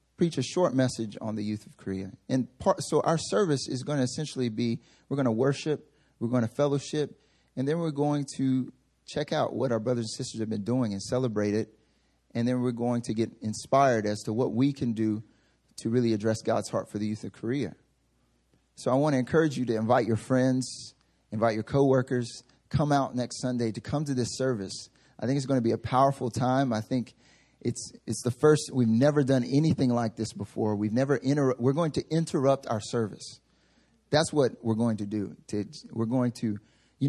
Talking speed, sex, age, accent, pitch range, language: 210 wpm, male, 30-49, American, 115-135 Hz, English